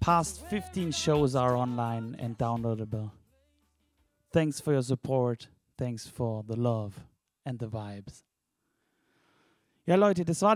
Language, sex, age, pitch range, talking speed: English, male, 30-49, 125-160 Hz, 125 wpm